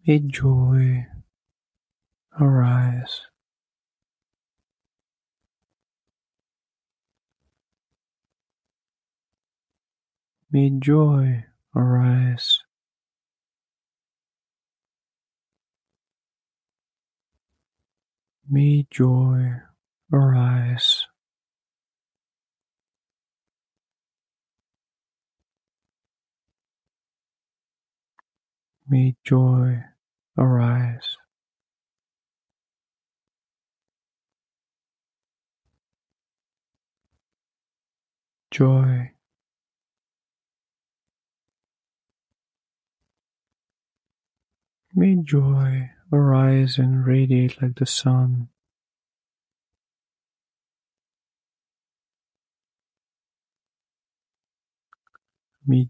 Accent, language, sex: American, English, male